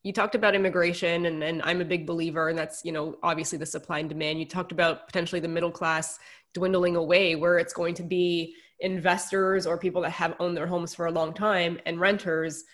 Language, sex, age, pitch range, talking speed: English, female, 20-39, 165-185 Hz, 220 wpm